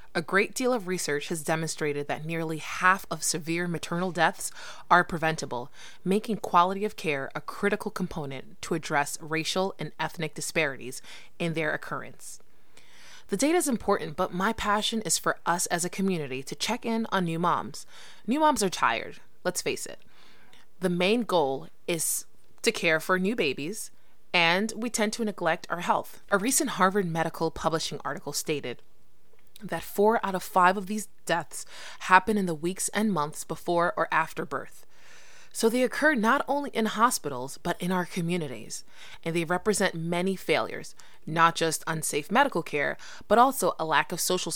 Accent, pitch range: American, 160-210 Hz